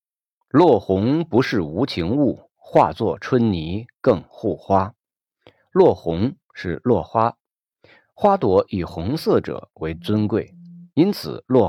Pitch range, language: 95-130 Hz, Chinese